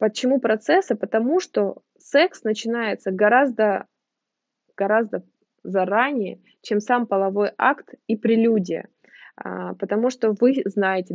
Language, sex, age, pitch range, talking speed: Russian, female, 20-39, 195-235 Hz, 100 wpm